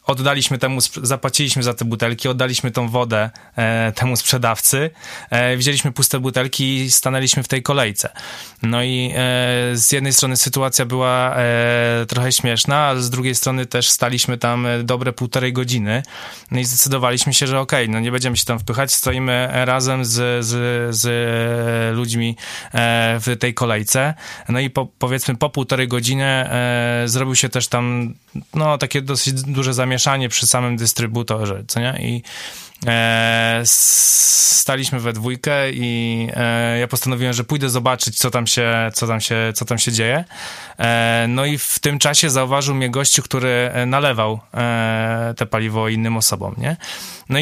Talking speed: 150 wpm